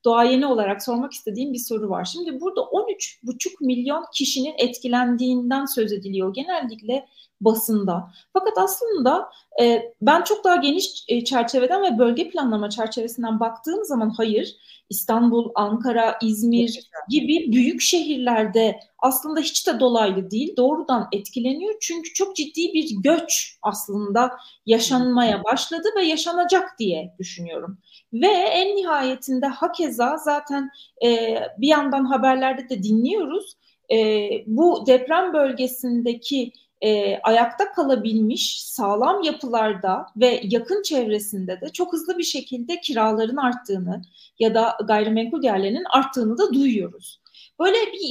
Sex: female